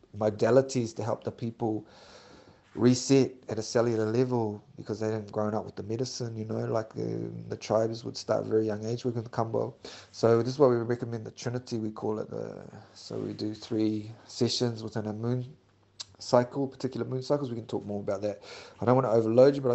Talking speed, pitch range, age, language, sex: 215 wpm, 110-125 Hz, 30-49, English, male